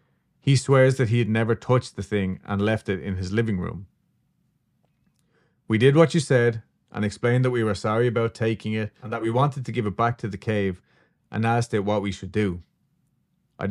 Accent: Irish